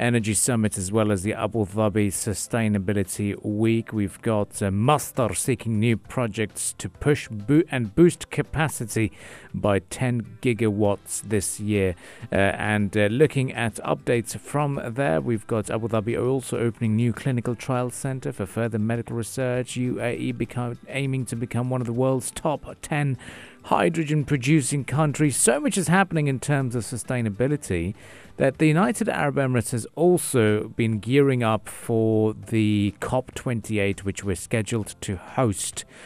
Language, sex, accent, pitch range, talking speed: English, male, British, 100-130 Hz, 145 wpm